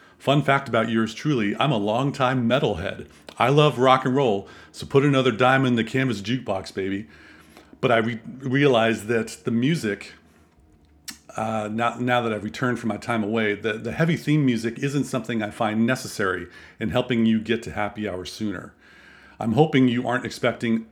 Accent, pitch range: American, 110-130 Hz